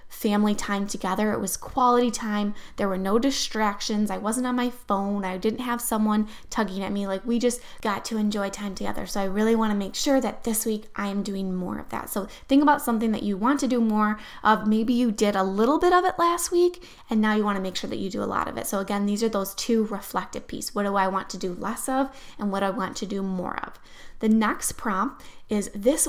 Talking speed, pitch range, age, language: 255 wpm, 200-240 Hz, 10-29, English